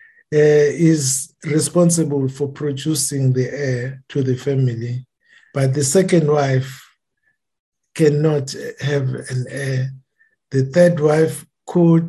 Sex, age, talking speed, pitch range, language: male, 50-69, 115 wpm, 130-155 Hz, English